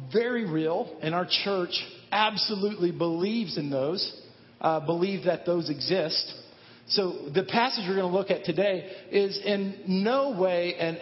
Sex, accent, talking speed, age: male, American, 150 wpm, 50-69